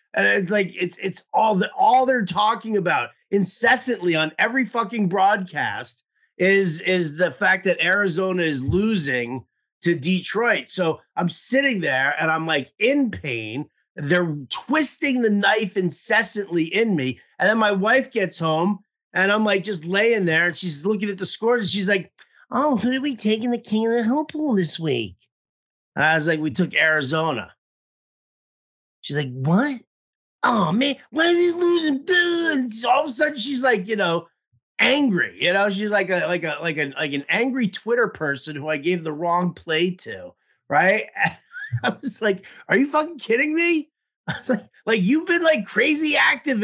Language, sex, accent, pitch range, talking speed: English, male, American, 170-255 Hz, 185 wpm